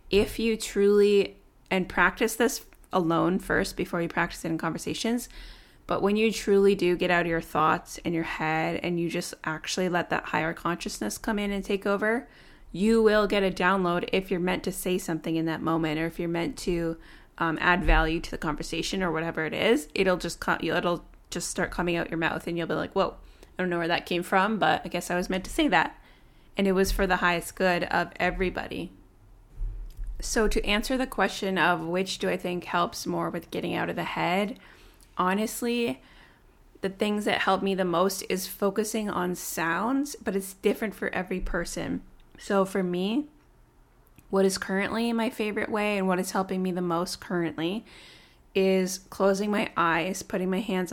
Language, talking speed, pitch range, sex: English, 200 wpm, 170-200 Hz, female